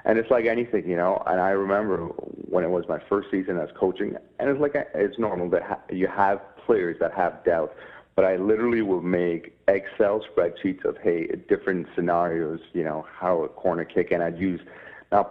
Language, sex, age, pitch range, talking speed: English, male, 30-49, 85-110 Hz, 200 wpm